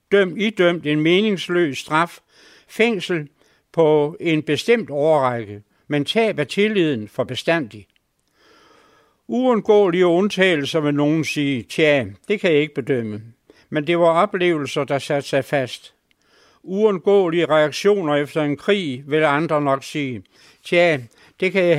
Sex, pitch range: male, 145-180 Hz